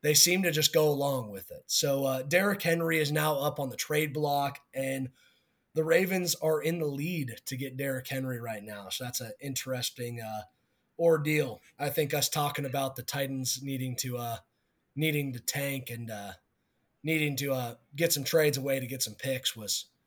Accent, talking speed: American, 195 wpm